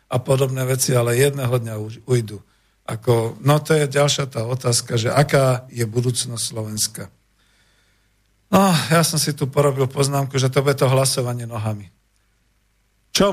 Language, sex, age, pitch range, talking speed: Slovak, male, 50-69, 115-145 Hz, 150 wpm